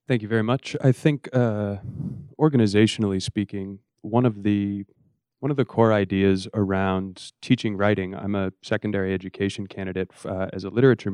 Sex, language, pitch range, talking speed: male, English, 100-115 Hz, 160 wpm